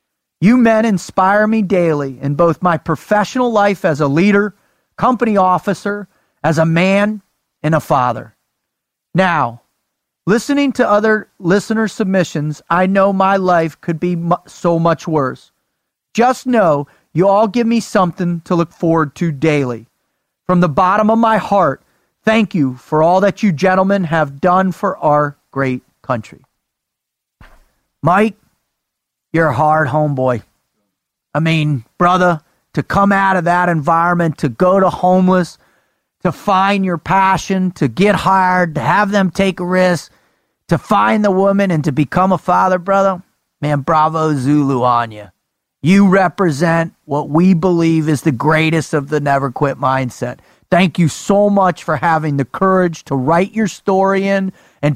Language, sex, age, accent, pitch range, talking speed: English, male, 40-59, American, 155-195 Hz, 155 wpm